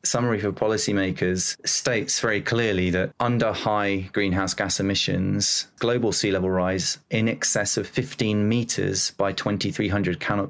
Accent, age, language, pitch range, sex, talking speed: British, 30-49, English, 95-105 Hz, male, 135 wpm